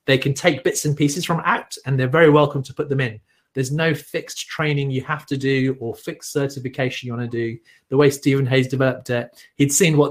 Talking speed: 235 wpm